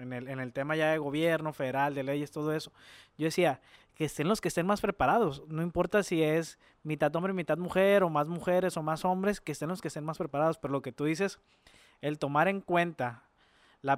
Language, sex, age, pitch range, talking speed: Spanish, male, 20-39, 140-175 Hz, 225 wpm